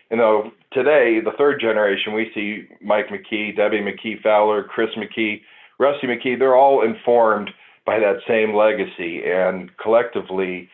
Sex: male